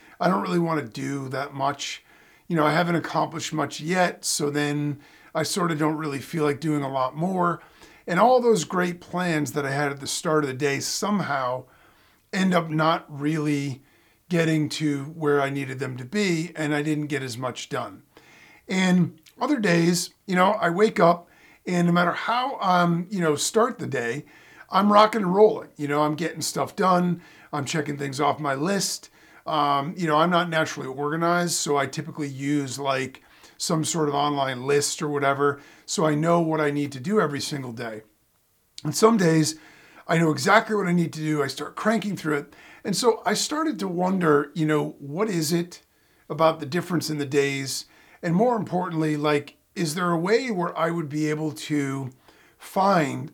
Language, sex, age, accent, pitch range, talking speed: English, male, 40-59, American, 145-180 Hz, 195 wpm